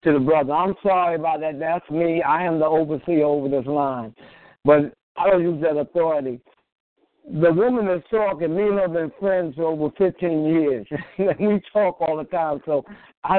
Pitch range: 145-180 Hz